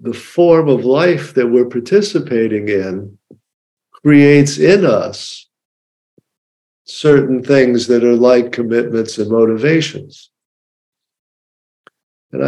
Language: English